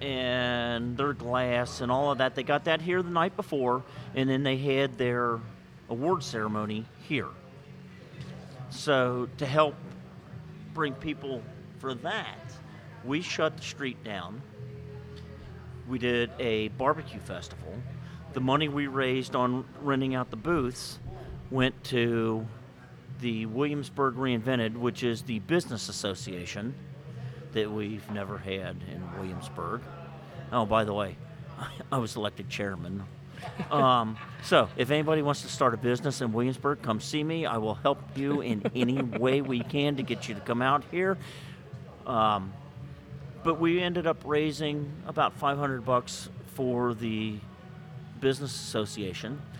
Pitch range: 120-145 Hz